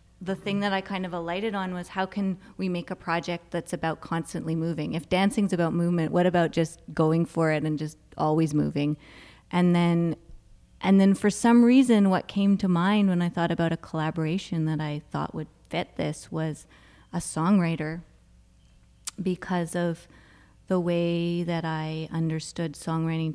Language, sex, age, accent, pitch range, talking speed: English, female, 30-49, American, 155-180 Hz, 170 wpm